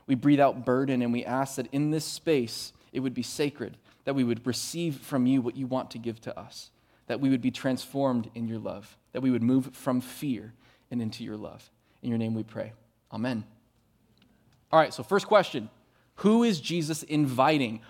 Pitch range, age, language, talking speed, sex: 130-195 Hz, 20-39, English, 205 wpm, male